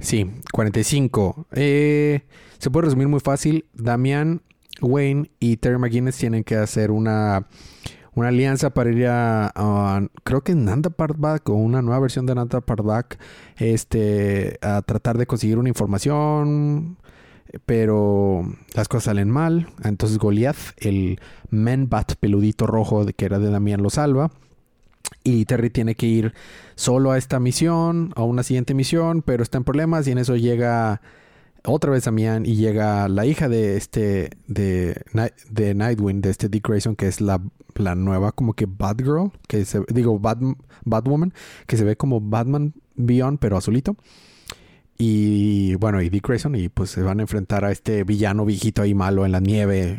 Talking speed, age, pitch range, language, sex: 165 wpm, 30-49, 105-135 Hz, Spanish, male